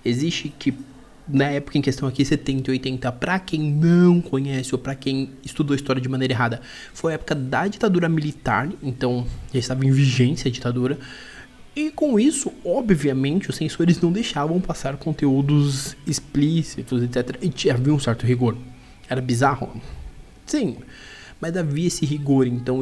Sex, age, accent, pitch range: male, 20-39, Brazilian, 130-155 Hz